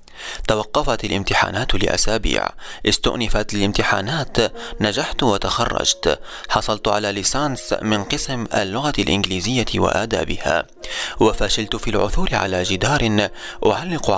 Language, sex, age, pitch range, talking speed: Arabic, male, 20-39, 105-125 Hz, 90 wpm